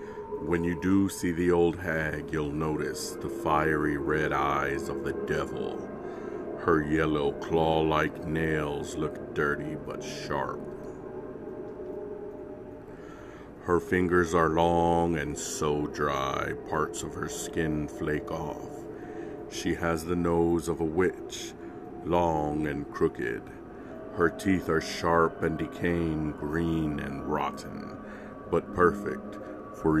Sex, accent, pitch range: male, American, 75-90 Hz